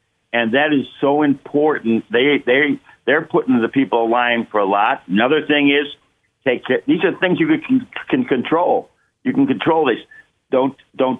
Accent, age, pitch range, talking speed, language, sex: American, 50-69, 120-150 Hz, 175 wpm, English, male